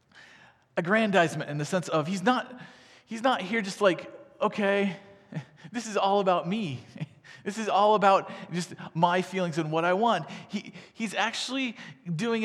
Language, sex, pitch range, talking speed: English, male, 140-205 Hz, 160 wpm